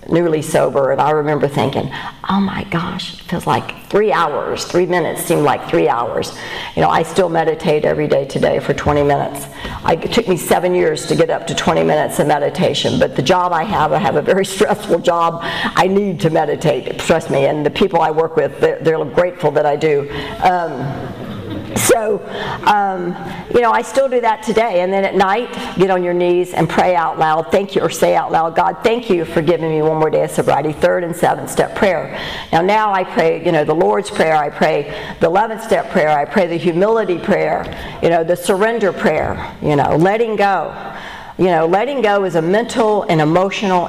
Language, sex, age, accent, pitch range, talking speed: English, female, 50-69, American, 165-210 Hz, 210 wpm